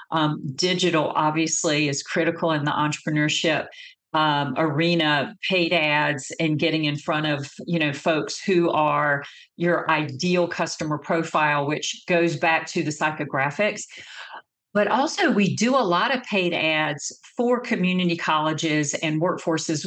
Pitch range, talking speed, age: 155-180 Hz, 140 wpm, 50-69